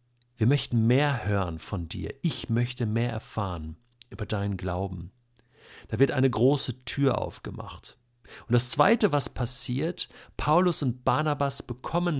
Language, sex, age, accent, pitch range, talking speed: German, male, 50-69, German, 120-155 Hz, 140 wpm